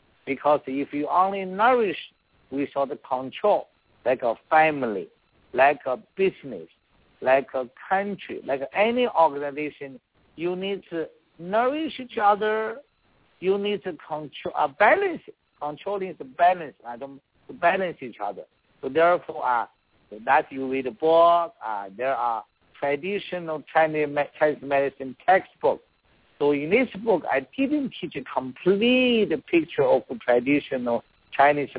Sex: male